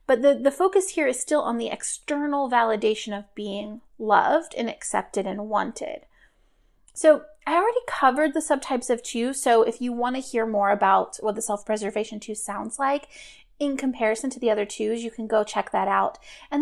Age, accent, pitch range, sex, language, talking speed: 30-49, American, 220-290 Hz, female, English, 190 wpm